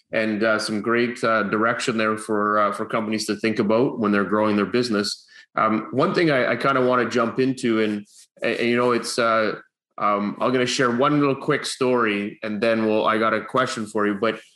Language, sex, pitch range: English, male, 110-125 Hz